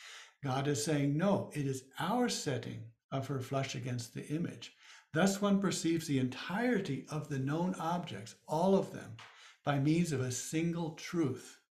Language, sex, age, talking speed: English, male, 60-79, 165 wpm